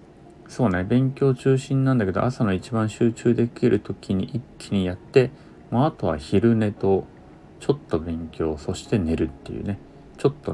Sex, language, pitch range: male, Japanese, 85-130 Hz